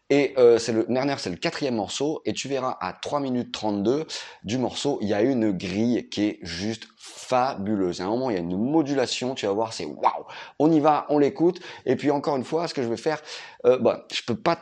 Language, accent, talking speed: French, French, 250 wpm